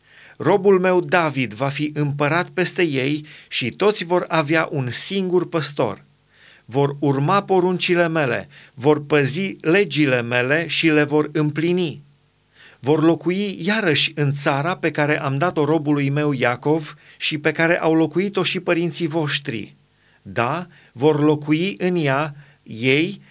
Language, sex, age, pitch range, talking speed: Romanian, male, 40-59, 145-180 Hz, 135 wpm